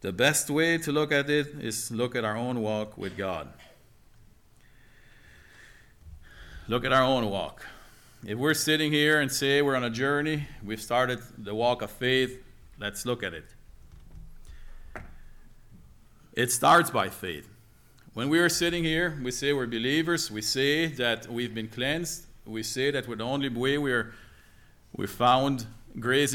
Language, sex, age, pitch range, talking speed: English, male, 40-59, 110-145 Hz, 155 wpm